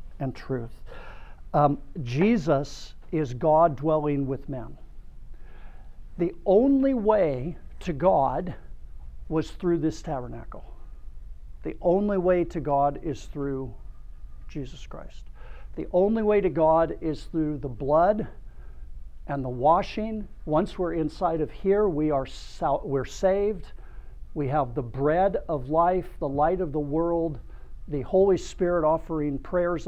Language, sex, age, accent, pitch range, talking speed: English, male, 50-69, American, 130-170 Hz, 130 wpm